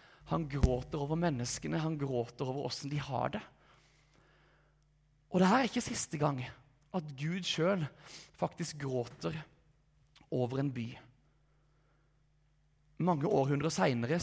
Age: 30-49